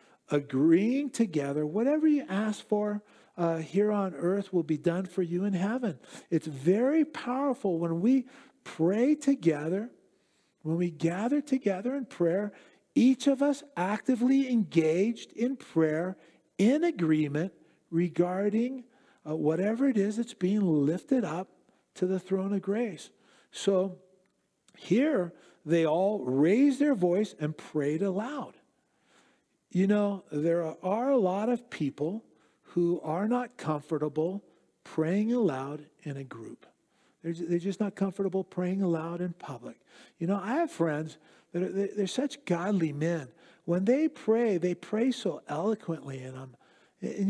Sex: male